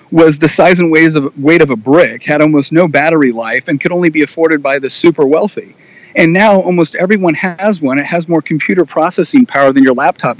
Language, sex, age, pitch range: English, male, 40-59, 150-200 Hz